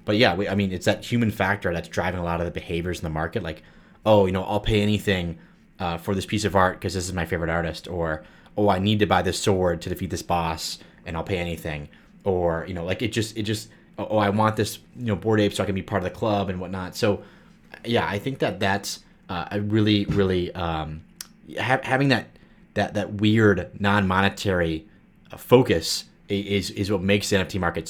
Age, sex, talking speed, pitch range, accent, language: 30-49, male, 230 wpm, 85-105 Hz, American, English